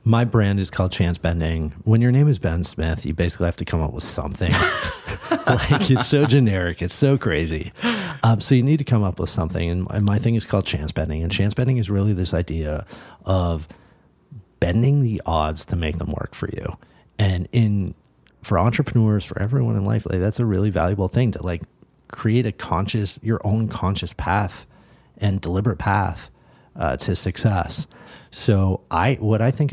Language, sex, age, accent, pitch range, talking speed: English, male, 40-59, American, 90-115 Hz, 190 wpm